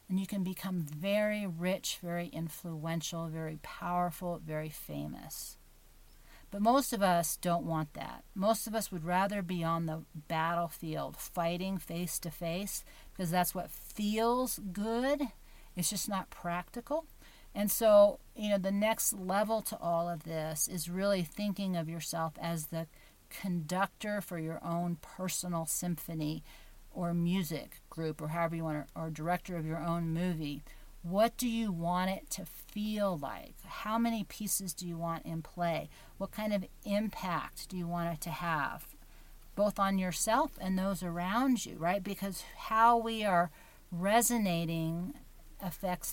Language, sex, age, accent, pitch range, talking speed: English, female, 50-69, American, 165-205 Hz, 155 wpm